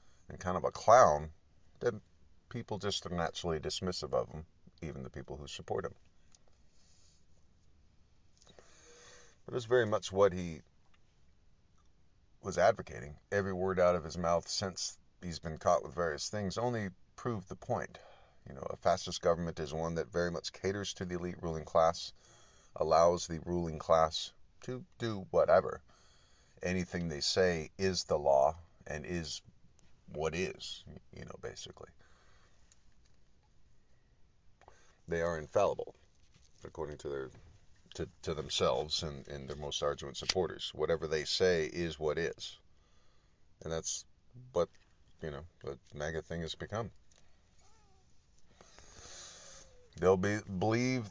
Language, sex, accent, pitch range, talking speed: English, male, American, 80-100 Hz, 135 wpm